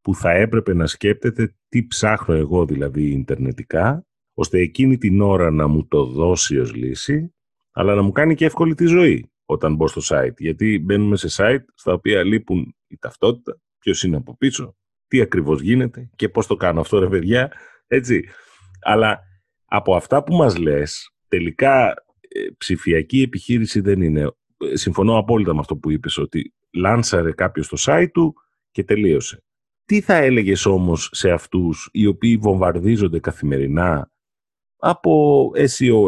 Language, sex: Greek, male